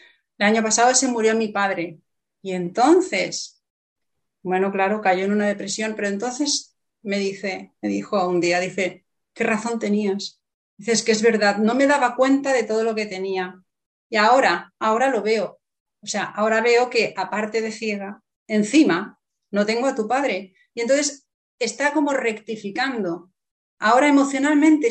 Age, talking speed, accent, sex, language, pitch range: 30-49, 160 wpm, Spanish, female, Spanish, 195-250 Hz